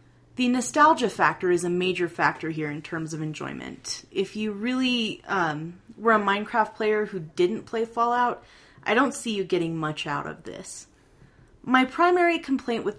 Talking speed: 170 wpm